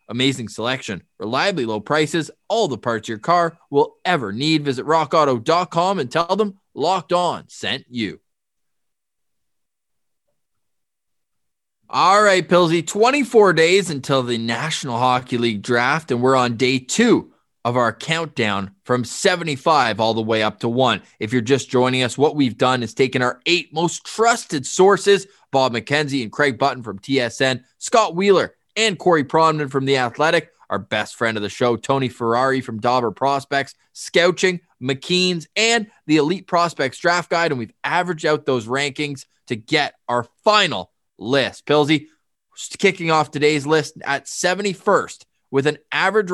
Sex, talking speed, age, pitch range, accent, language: male, 155 wpm, 20-39, 125-175 Hz, American, English